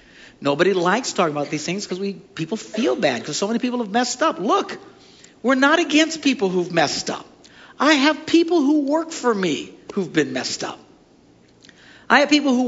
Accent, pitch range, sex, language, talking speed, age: American, 200-280 Hz, male, English, 195 wpm, 50-69